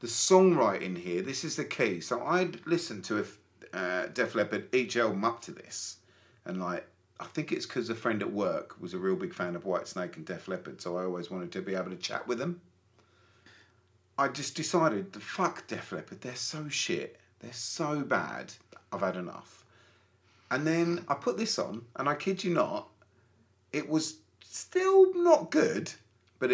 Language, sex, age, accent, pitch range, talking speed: English, male, 40-59, British, 100-150 Hz, 190 wpm